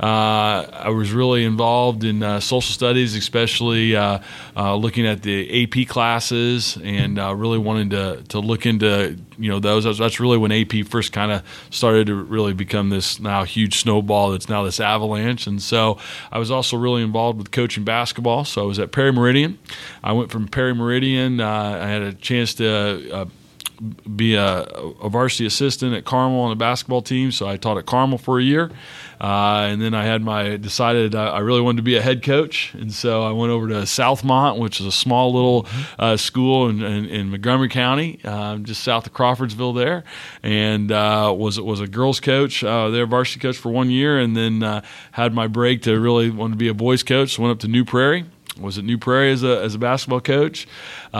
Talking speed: 210 wpm